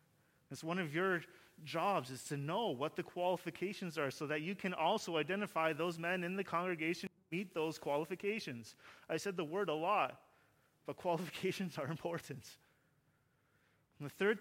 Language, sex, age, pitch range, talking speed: English, male, 30-49, 145-190 Hz, 165 wpm